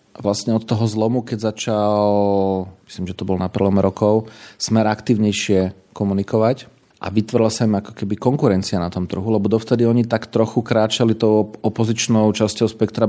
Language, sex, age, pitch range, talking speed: Slovak, male, 40-59, 100-120 Hz, 165 wpm